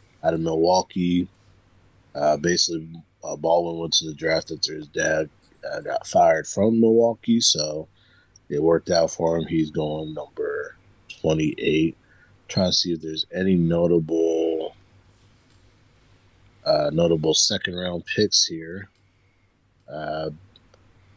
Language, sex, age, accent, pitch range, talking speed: English, male, 30-49, American, 80-100 Hz, 120 wpm